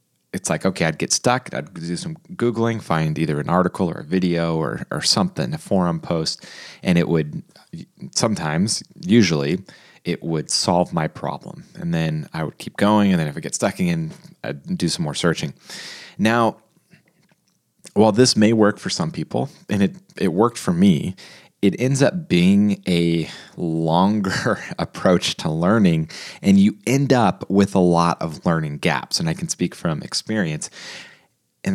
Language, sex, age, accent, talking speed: English, male, 30-49, American, 170 wpm